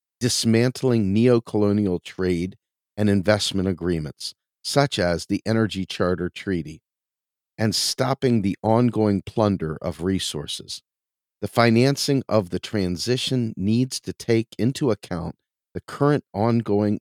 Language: English